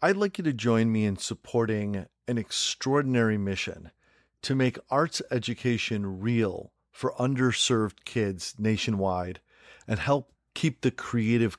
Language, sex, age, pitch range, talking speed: English, male, 40-59, 105-130 Hz, 130 wpm